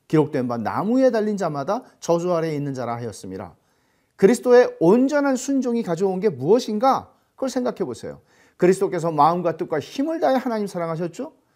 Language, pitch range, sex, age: Korean, 165-255 Hz, male, 40-59